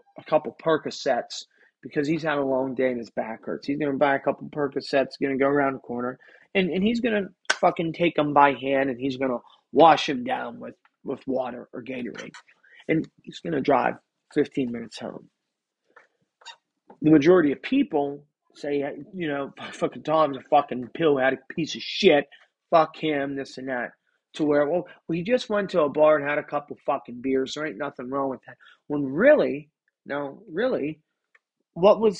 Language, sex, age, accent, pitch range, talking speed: English, male, 30-49, American, 135-165 Hz, 195 wpm